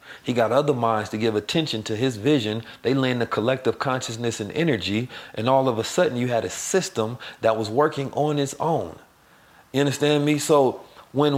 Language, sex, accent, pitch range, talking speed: English, male, American, 115-145 Hz, 195 wpm